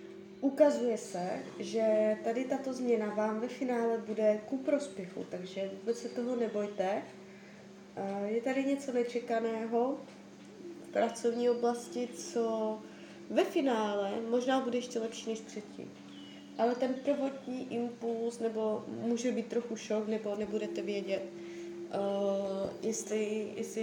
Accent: native